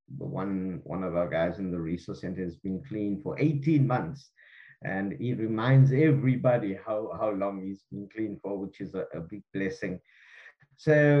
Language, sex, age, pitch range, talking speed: English, male, 50-69, 100-145 Hz, 180 wpm